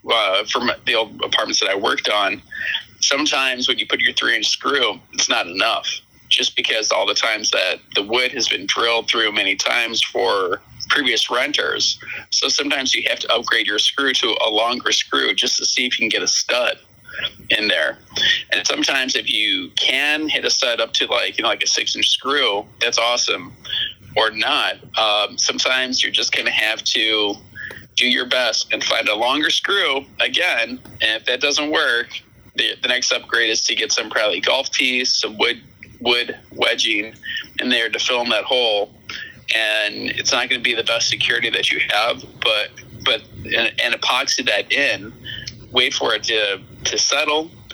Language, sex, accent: English, male, American